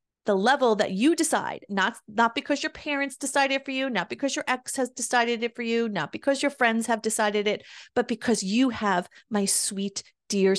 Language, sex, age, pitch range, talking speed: English, female, 30-49, 215-270 Hz, 210 wpm